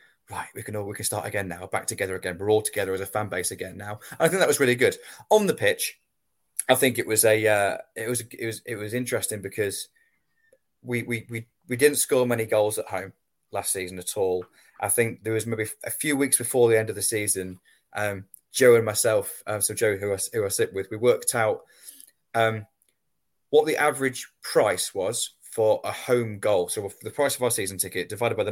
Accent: British